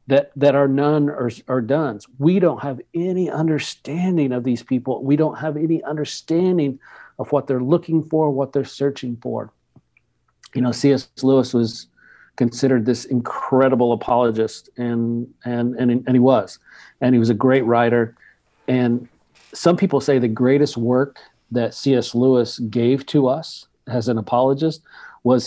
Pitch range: 120-140 Hz